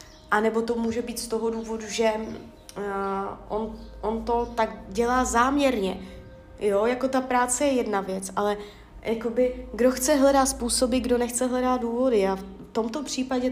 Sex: female